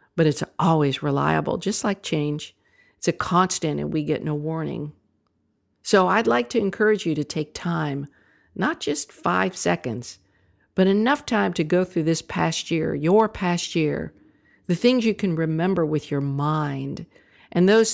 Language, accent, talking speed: English, American, 165 wpm